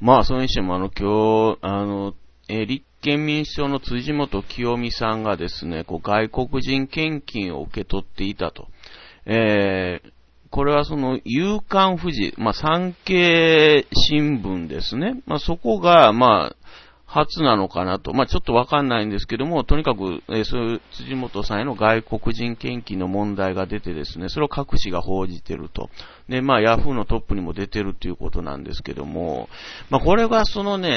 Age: 40-59